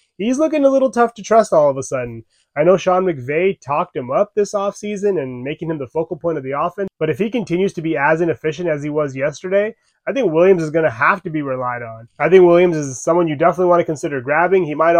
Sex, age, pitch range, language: male, 20-39, 145-185 Hz, English